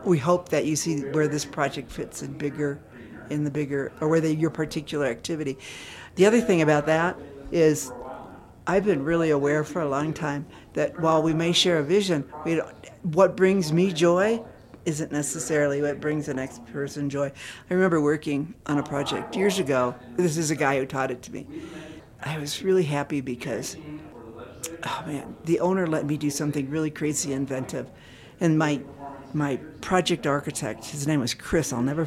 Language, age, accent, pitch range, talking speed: English, 60-79, American, 140-175 Hz, 185 wpm